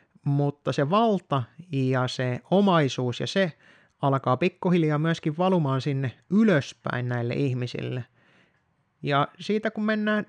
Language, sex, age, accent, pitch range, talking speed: Finnish, male, 30-49, native, 130-180 Hz, 115 wpm